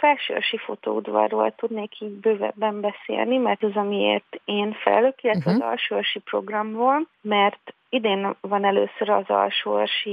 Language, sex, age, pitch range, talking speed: Hungarian, female, 30-49, 195-225 Hz, 125 wpm